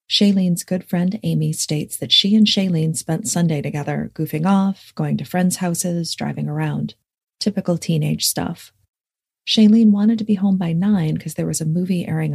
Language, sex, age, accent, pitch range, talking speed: English, female, 30-49, American, 150-185 Hz, 175 wpm